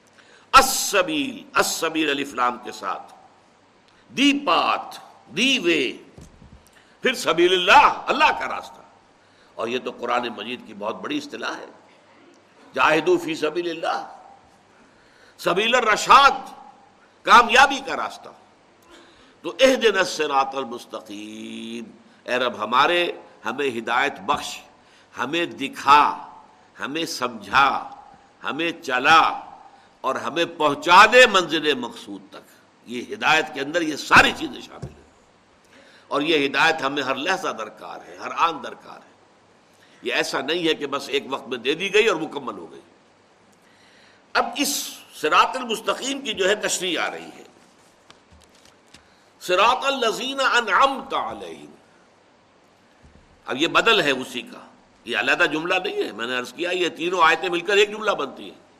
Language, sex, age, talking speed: Urdu, male, 60-79, 130 wpm